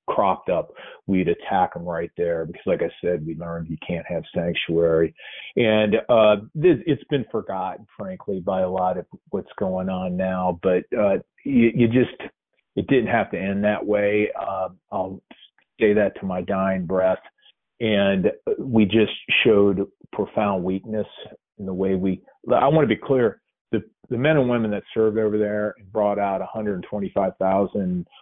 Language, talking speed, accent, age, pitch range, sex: English, 170 wpm, American, 40-59, 90-110 Hz, male